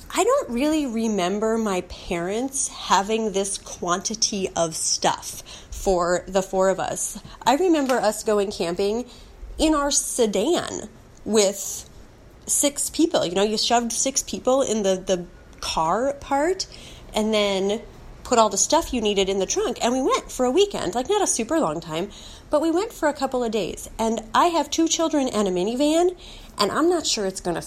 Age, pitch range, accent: 30-49, 180-255 Hz, American